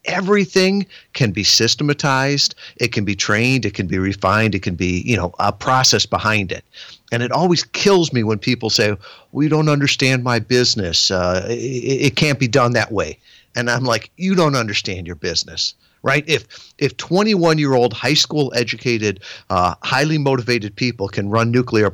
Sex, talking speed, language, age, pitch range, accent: male, 175 wpm, English, 50-69, 100-130 Hz, American